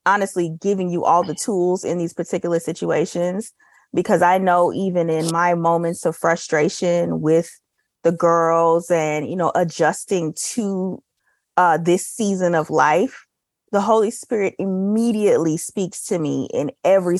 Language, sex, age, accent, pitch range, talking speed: English, female, 30-49, American, 160-185 Hz, 145 wpm